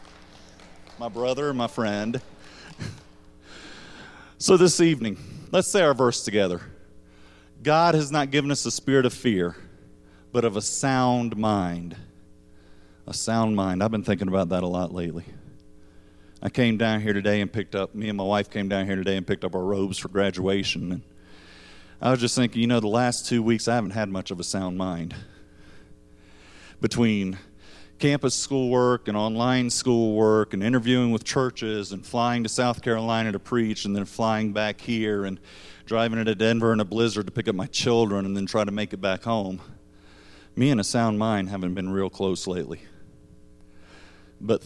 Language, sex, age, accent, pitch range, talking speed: English, male, 40-59, American, 95-115 Hz, 180 wpm